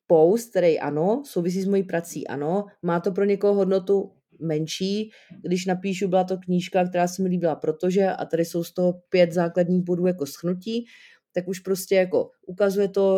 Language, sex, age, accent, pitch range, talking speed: Czech, female, 30-49, native, 175-205 Hz, 180 wpm